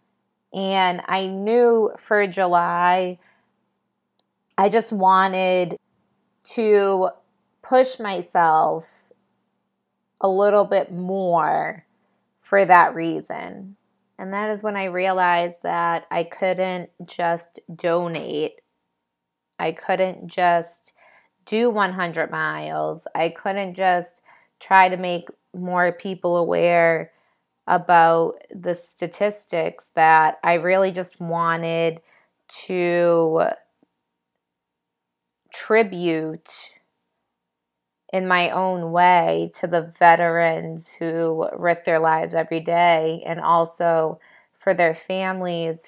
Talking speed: 95 wpm